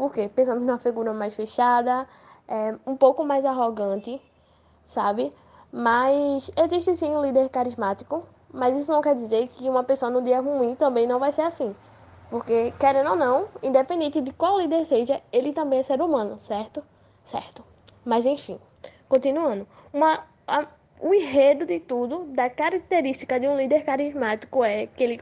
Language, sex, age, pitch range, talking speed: Portuguese, female, 10-29, 240-285 Hz, 165 wpm